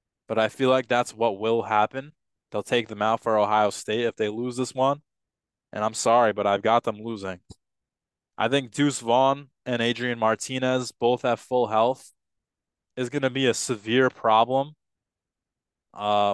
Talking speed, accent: 170 wpm, American